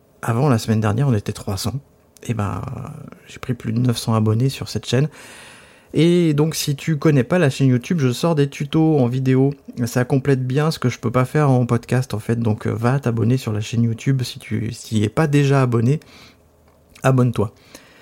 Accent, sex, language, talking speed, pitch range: French, male, French, 205 wpm, 115-150 Hz